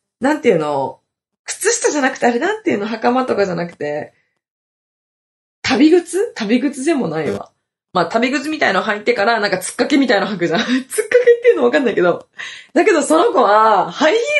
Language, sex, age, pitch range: Japanese, female, 20-39, 170-275 Hz